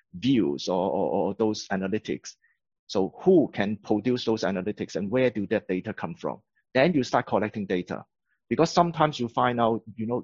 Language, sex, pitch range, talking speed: English, male, 100-125 Hz, 180 wpm